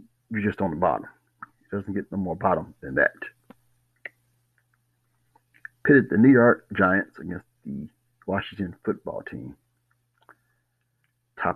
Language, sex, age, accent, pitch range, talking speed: English, male, 60-79, American, 100-120 Hz, 125 wpm